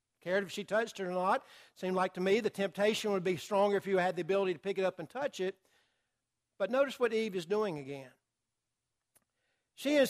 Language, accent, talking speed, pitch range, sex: English, American, 225 wpm, 200-255 Hz, male